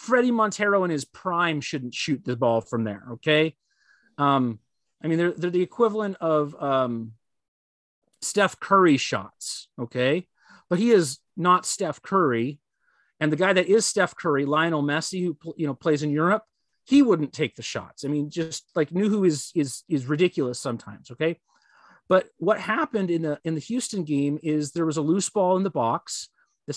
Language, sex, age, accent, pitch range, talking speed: English, male, 30-49, American, 145-190 Hz, 185 wpm